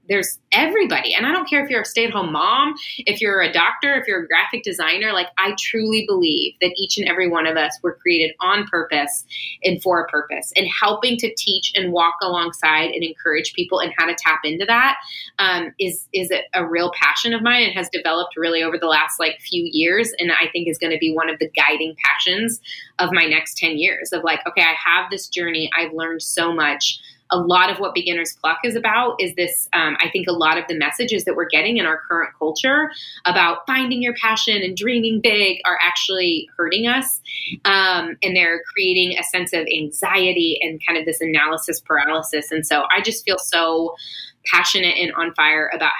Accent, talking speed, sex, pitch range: American, 215 wpm, female, 165-205 Hz